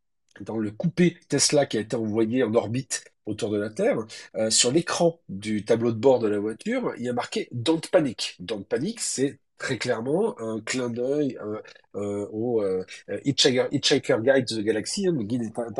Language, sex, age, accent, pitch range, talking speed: French, male, 40-59, French, 105-135 Hz, 175 wpm